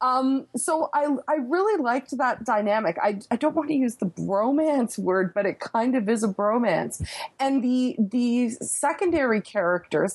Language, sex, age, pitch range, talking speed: English, female, 30-49, 190-280 Hz, 170 wpm